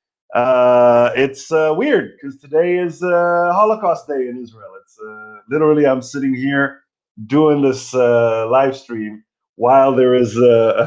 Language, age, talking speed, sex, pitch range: English, 30-49, 145 wpm, male, 130-185 Hz